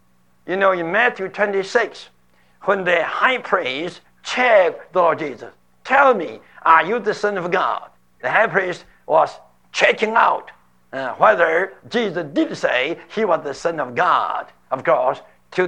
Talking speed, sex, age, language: 155 wpm, male, 60-79, English